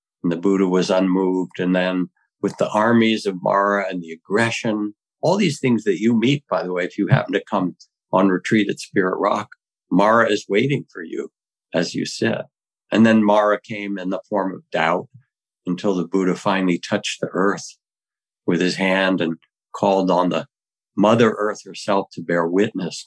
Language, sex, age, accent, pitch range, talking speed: English, male, 60-79, American, 95-120 Hz, 185 wpm